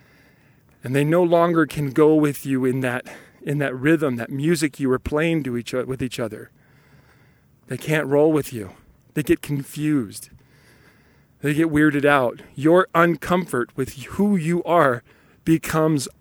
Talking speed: 160 wpm